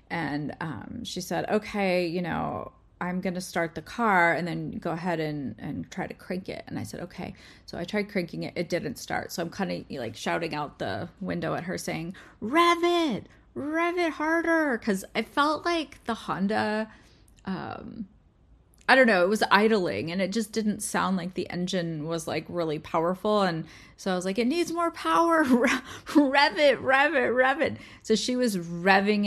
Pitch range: 170-220 Hz